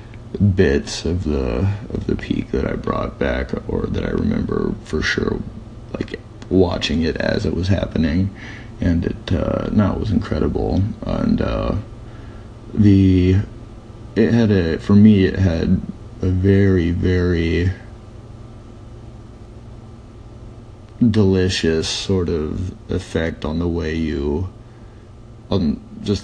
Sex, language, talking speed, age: male, English, 120 wpm, 20-39